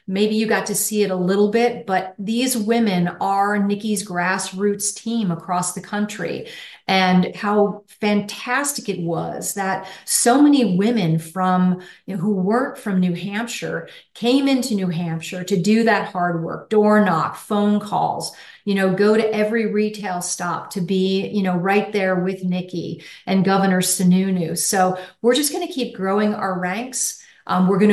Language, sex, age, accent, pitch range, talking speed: English, female, 40-59, American, 185-220 Hz, 165 wpm